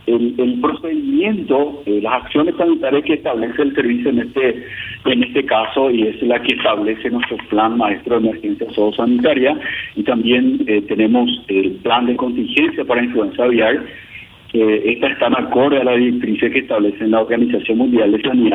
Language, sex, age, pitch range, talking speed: Spanish, male, 50-69, 110-130 Hz, 175 wpm